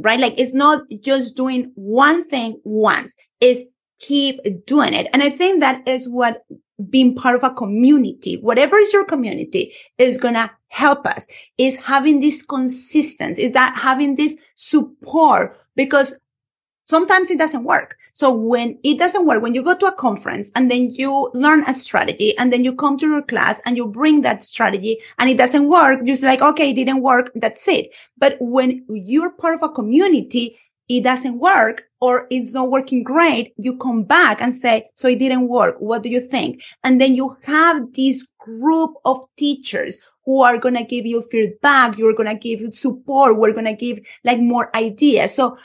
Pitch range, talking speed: 240-295 Hz, 190 wpm